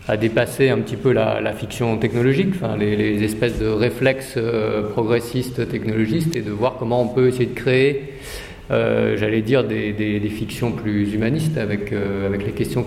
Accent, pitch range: French, 110-135 Hz